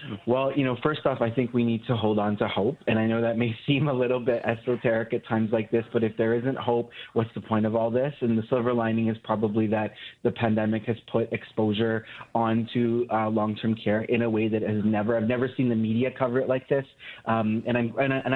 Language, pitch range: English, 115-135 Hz